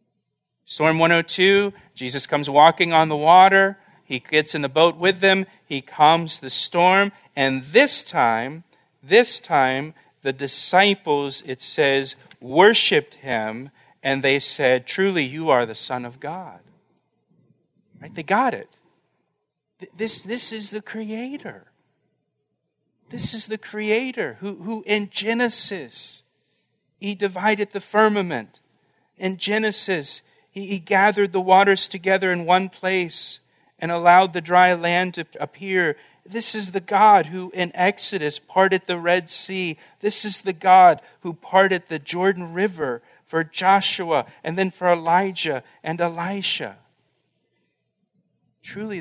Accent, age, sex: American, 40-59, male